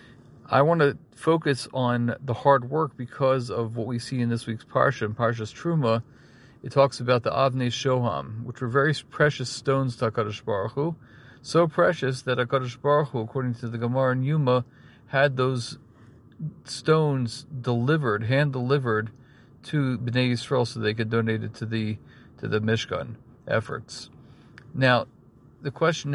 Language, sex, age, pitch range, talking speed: English, male, 40-59, 115-135 Hz, 160 wpm